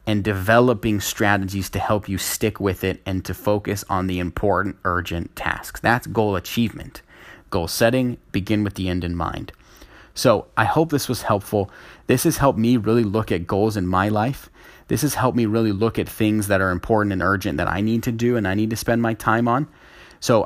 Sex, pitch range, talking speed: male, 95-115 Hz, 210 wpm